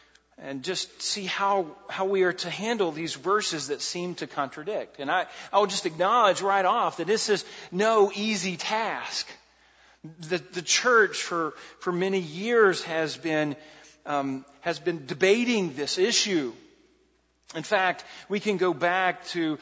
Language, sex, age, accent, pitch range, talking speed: English, male, 40-59, American, 165-205 Hz, 155 wpm